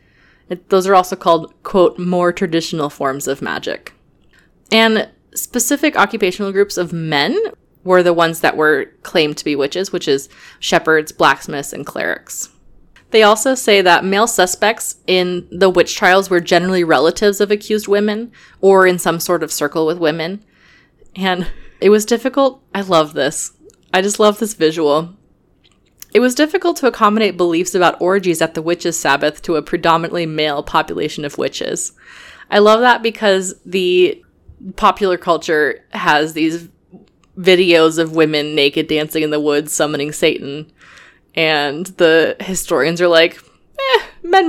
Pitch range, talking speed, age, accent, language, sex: 160-210 Hz, 150 wpm, 20-39, American, English, female